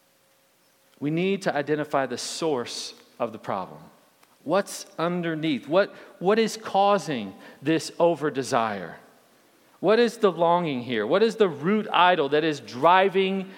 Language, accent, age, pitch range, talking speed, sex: English, American, 40-59, 150-200 Hz, 135 wpm, male